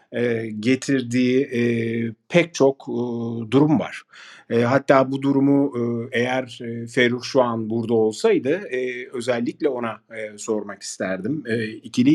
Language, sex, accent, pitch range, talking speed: Turkish, male, native, 115-135 Hz, 135 wpm